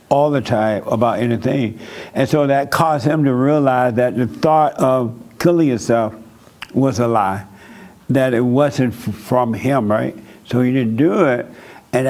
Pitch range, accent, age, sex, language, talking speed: 120-140 Hz, American, 60-79, male, English, 165 wpm